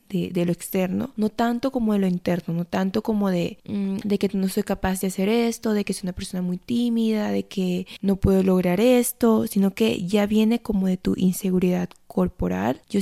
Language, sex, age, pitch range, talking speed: Spanish, female, 20-39, 185-220 Hz, 210 wpm